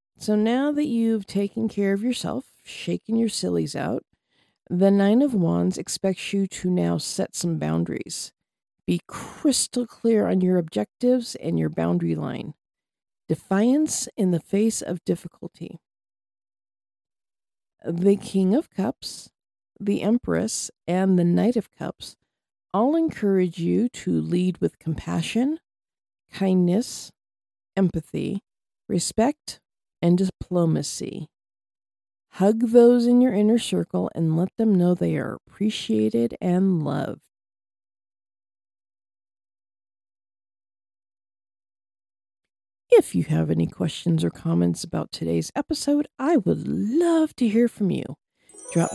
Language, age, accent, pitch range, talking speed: English, 50-69, American, 150-230 Hz, 115 wpm